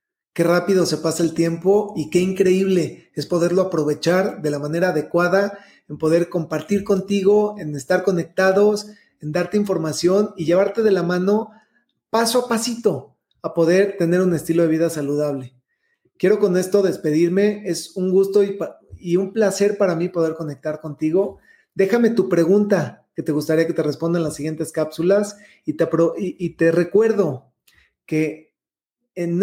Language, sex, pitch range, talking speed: Spanish, male, 160-195 Hz, 155 wpm